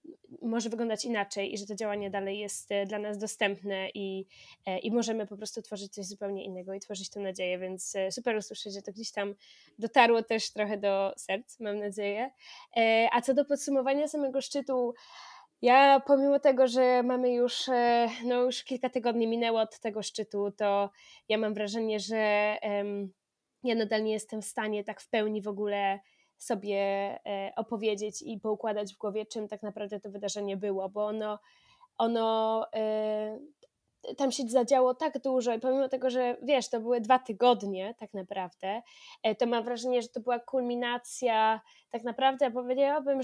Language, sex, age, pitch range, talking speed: Polish, female, 20-39, 210-250 Hz, 160 wpm